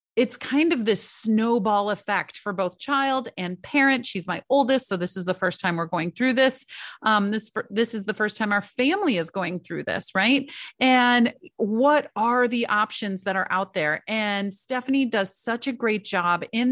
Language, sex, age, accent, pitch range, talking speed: English, female, 30-49, American, 190-255 Hz, 195 wpm